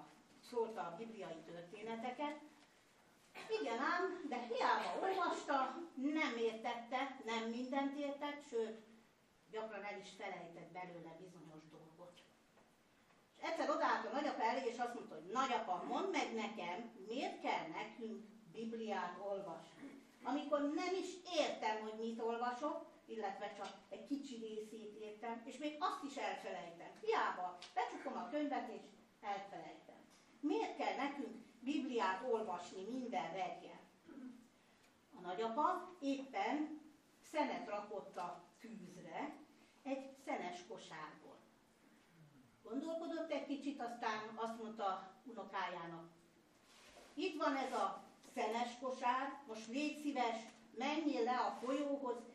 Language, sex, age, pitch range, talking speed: Hungarian, female, 60-79, 205-280 Hz, 115 wpm